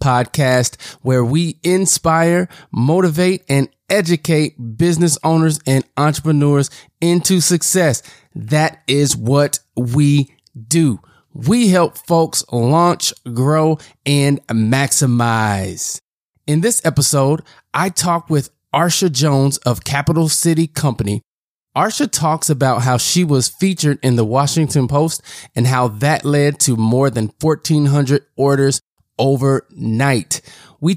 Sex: male